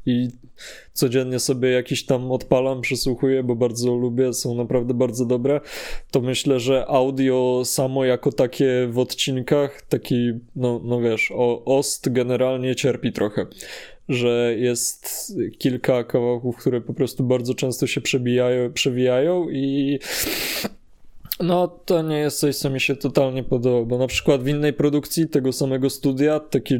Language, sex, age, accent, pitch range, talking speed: Polish, male, 20-39, native, 125-135 Hz, 145 wpm